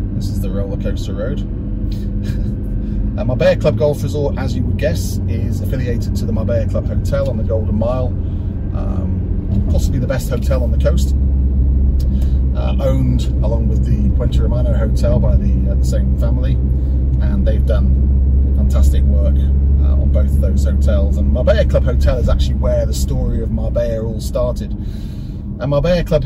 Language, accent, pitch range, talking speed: English, British, 65-100 Hz, 170 wpm